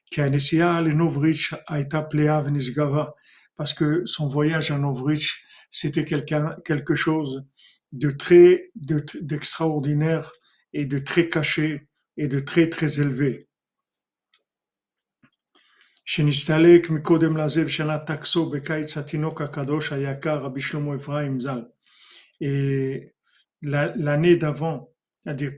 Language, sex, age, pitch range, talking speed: French, male, 50-69, 140-160 Hz, 85 wpm